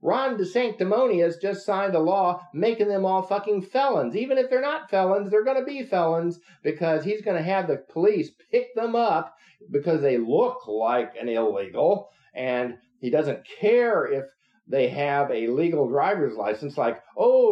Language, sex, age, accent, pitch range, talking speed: English, male, 50-69, American, 125-195 Hz, 170 wpm